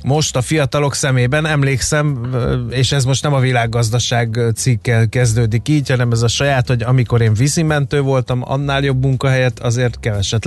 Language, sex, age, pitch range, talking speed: Hungarian, male, 30-49, 115-145 Hz, 160 wpm